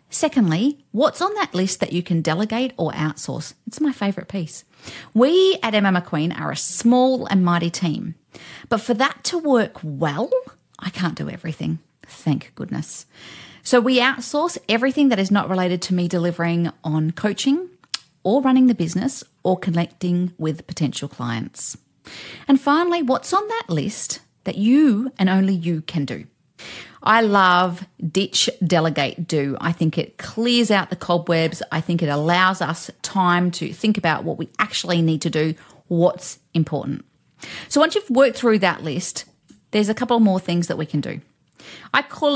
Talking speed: 170 wpm